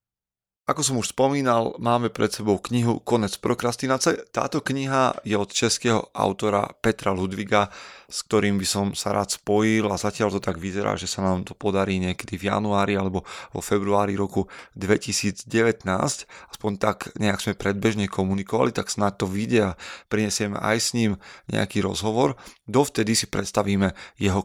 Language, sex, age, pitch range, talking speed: Slovak, male, 30-49, 100-110 Hz, 155 wpm